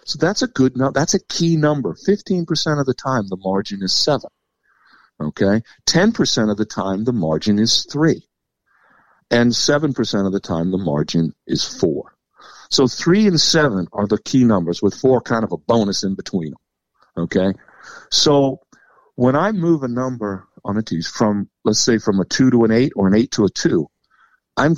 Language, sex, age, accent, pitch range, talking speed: English, male, 50-69, American, 100-140 Hz, 190 wpm